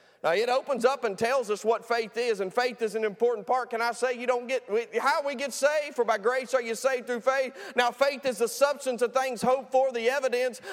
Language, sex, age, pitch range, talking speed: English, male, 30-49, 225-260 Hz, 250 wpm